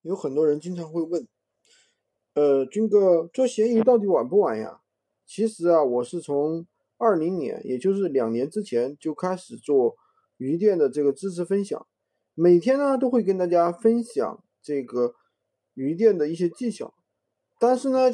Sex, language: male, Chinese